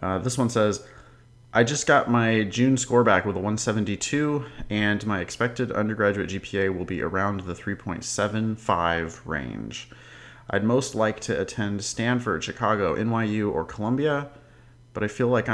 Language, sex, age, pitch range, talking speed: English, male, 30-49, 95-120 Hz, 150 wpm